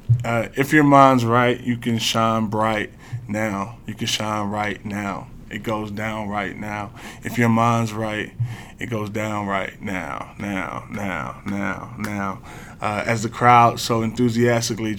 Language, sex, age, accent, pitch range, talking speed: English, male, 20-39, American, 105-125 Hz, 155 wpm